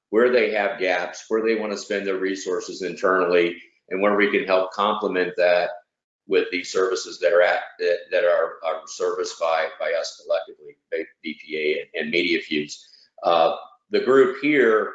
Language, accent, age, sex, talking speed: English, American, 50-69, male, 175 wpm